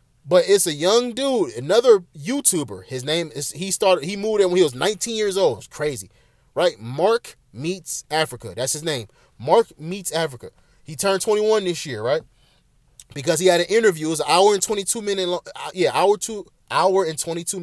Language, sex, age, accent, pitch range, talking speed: English, male, 30-49, American, 145-200 Hz, 195 wpm